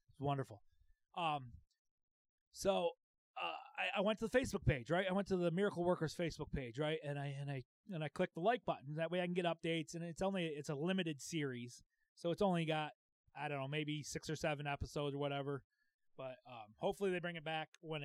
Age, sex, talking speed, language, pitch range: 30-49, male, 220 wpm, English, 140-170 Hz